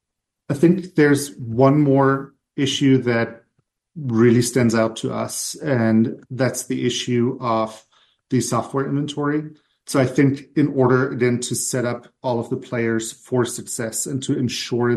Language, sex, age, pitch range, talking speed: English, male, 40-59, 115-135 Hz, 150 wpm